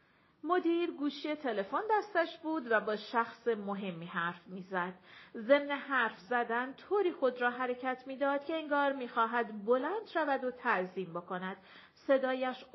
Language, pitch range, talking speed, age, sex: Persian, 225-330 Hz, 130 wpm, 40-59, female